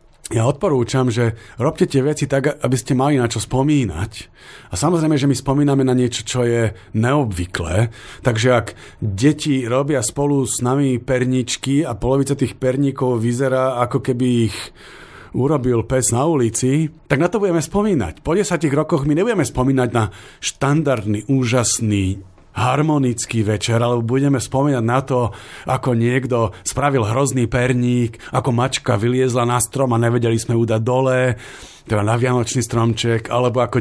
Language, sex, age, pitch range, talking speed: Slovak, male, 40-59, 115-140 Hz, 150 wpm